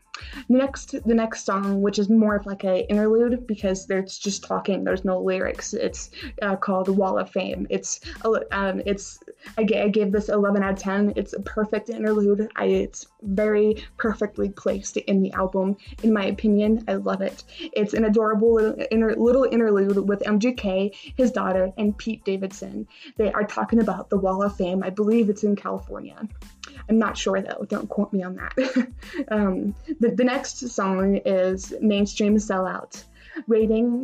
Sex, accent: female, American